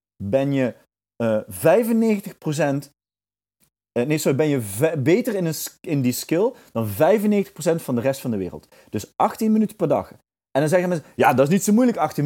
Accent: Dutch